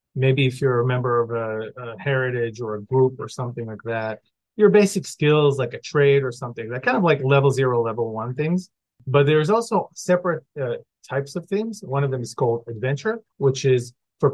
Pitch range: 125-155 Hz